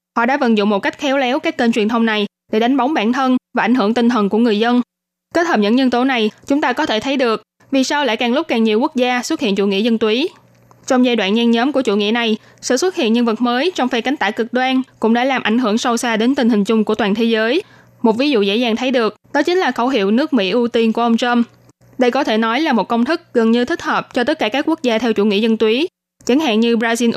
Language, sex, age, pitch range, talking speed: Vietnamese, female, 20-39, 220-255 Hz, 300 wpm